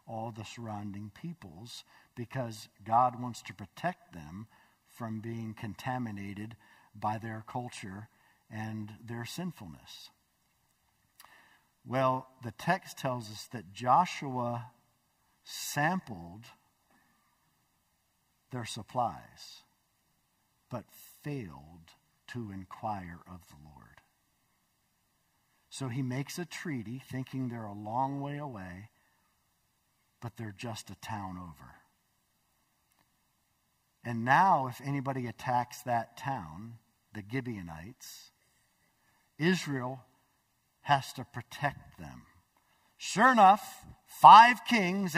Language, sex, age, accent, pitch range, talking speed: English, male, 50-69, American, 105-135 Hz, 95 wpm